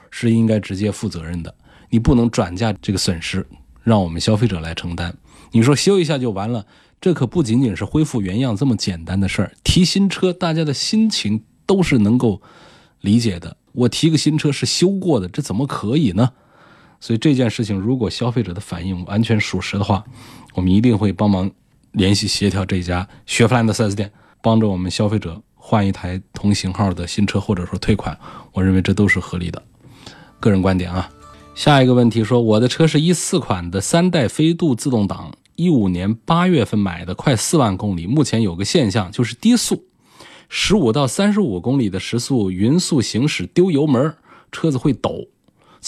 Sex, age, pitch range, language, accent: male, 20-39, 95-135 Hz, Chinese, native